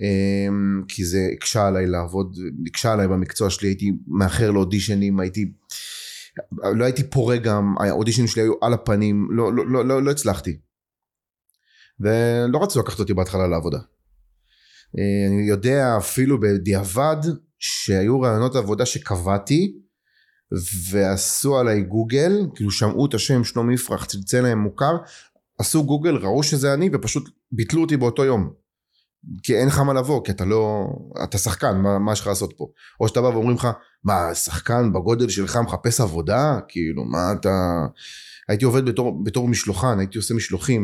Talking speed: 145 wpm